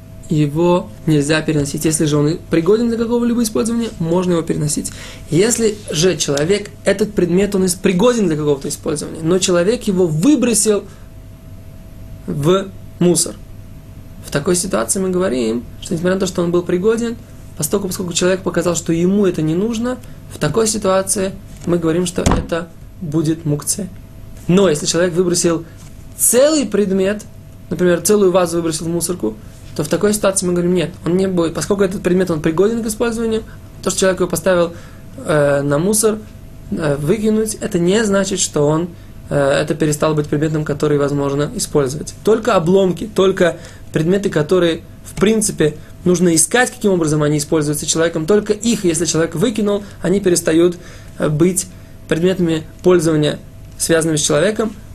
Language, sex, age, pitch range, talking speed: Russian, male, 20-39, 155-195 Hz, 150 wpm